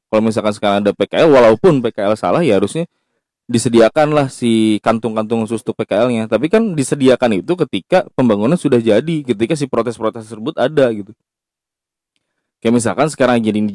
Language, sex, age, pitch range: Indonesian, male, 20-39, 115-175 Hz